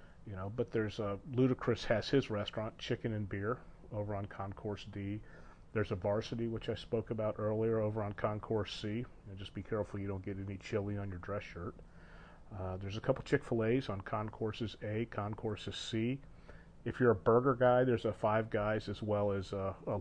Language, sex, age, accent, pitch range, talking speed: English, male, 40-59, American, 95-115 Hz, 200 wpm